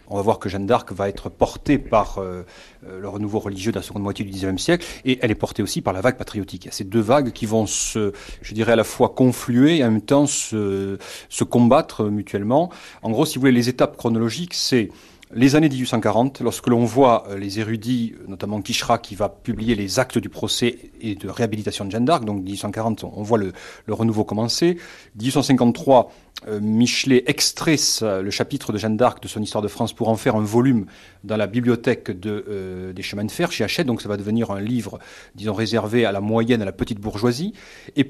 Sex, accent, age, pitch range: male, French, 40-59, 105-130 Hz